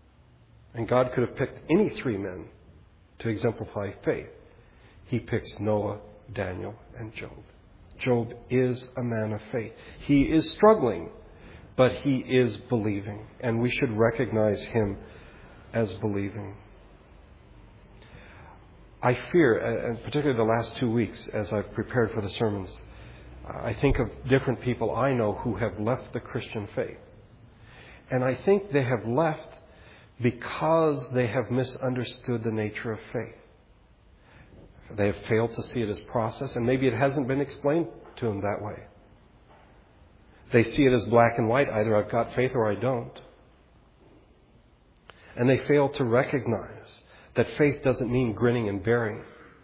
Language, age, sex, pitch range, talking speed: English, 50-69, male, 105-130 Hz, 145 wpm